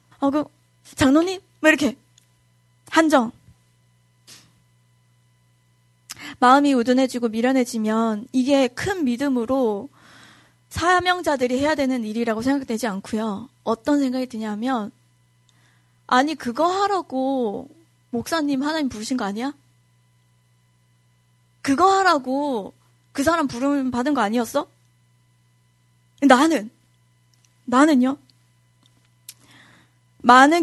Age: 20-39